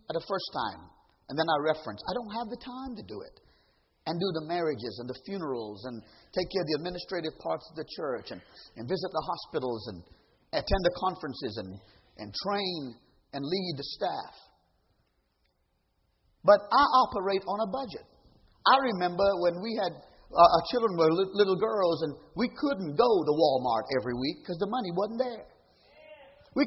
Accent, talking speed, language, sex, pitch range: American, 180 wpm, English, male, 160-245 Hz